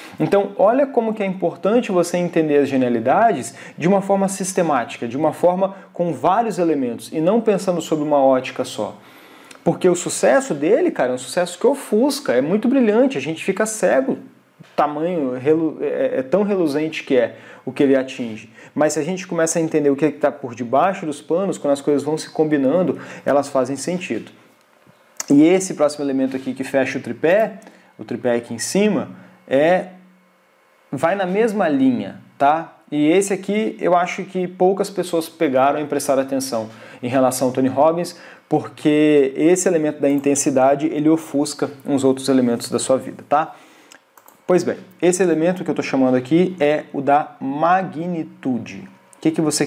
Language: Portuguese